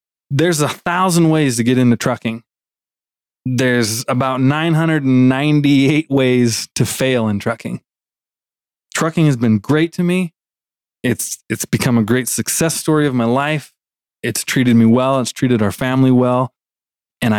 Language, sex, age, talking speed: English, male, 20-39, 145 wpm